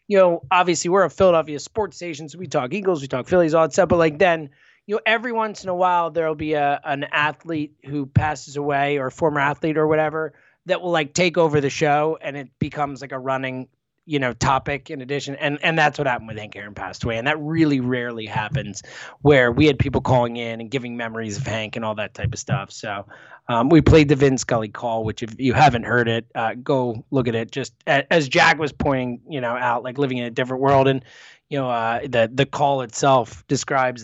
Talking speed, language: 235 wpm, English